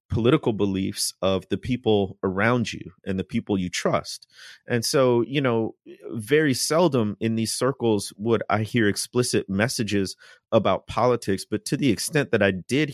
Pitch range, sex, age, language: 95-120 Hz, male, 30-49, English